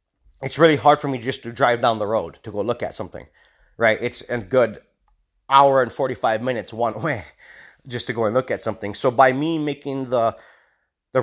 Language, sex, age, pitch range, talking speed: English, male, 30-49, 110-135 Hz, 210 wpm